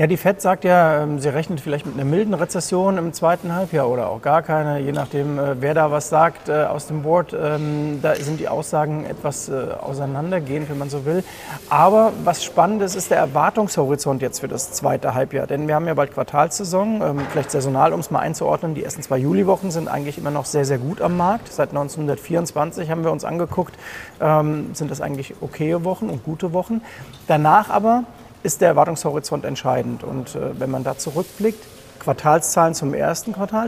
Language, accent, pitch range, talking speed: German, German, 145-185 Hz, 185 wpm